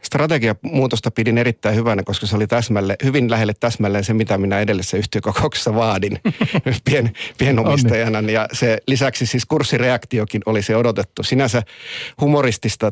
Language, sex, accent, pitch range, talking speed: Finnish, male, native, 100-115 Hz, 130 wpm